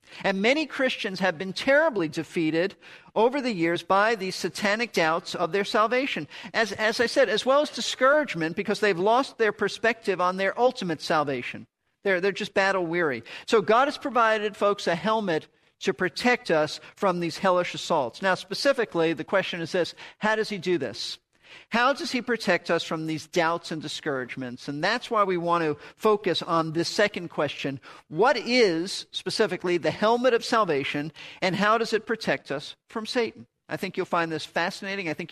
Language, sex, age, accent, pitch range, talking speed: English, male, 50-69, American, 165-220 Hz, 185 wpm